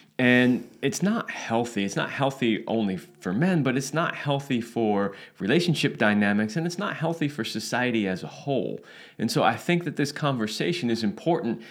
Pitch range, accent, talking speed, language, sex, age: 100-145 Hz, American, 180 wpm, English, male, 30-49